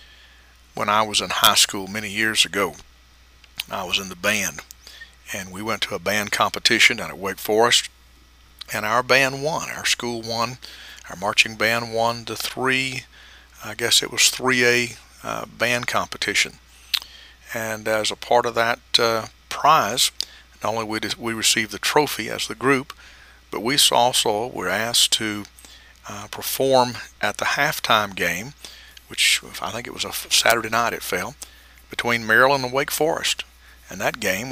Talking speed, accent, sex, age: 165 wpm, American, male, 50-69